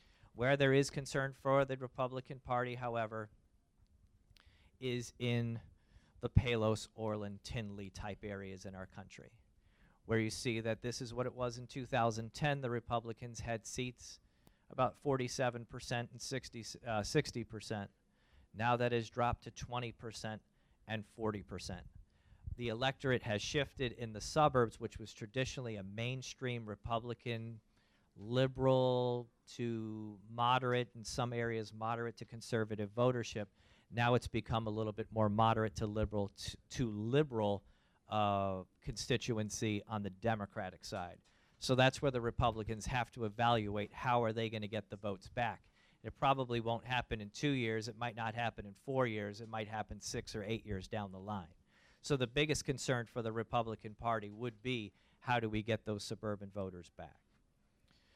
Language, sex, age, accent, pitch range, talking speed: English, male, 40-59, American, 105-120 Hz, 150 wpm